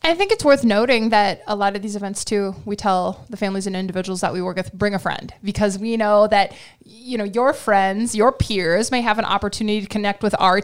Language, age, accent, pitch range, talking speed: English, 20-39, American, 190-240 Hz, 245 wpm